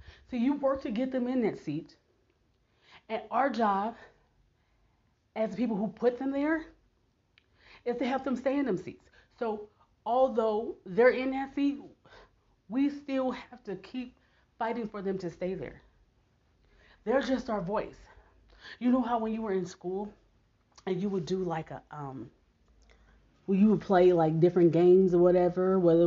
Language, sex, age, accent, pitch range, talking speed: English, female, 30-49, American, 165-215 Hz, 170 wpm